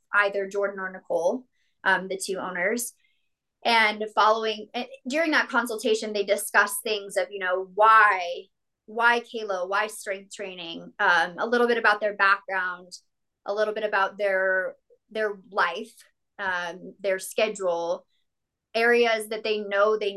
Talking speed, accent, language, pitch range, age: 140 wpm, American, English, 195-235 Hz, 20-39